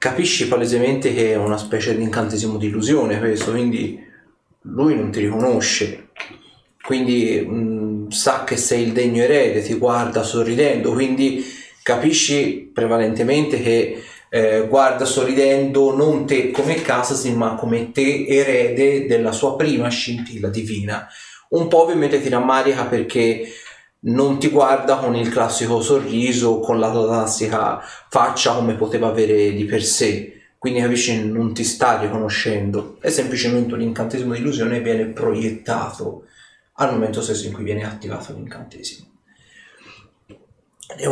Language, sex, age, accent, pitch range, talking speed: Italian, male, 30-49, native, 110-130 Hz, 135 wpm